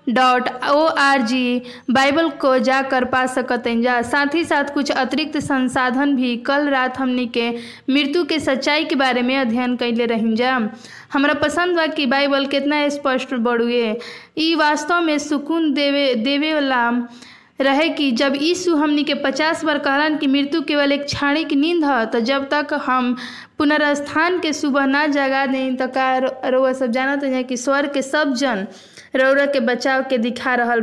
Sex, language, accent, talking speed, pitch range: female, Hindi, native, 160 wpm, 250-290 Hz